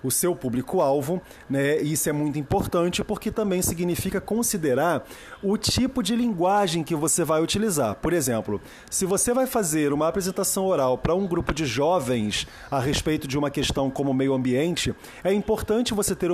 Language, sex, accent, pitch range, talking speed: Portuguese, male, Brazilian, 145-195 Hz, 175 wpm